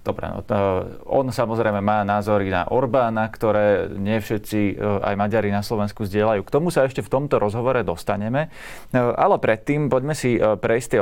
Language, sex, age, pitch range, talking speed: Slovak, male, 30-49, 100-120 Hz, 170 wpm